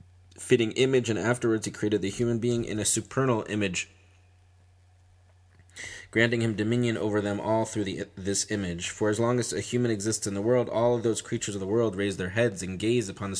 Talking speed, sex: 205 wpm, male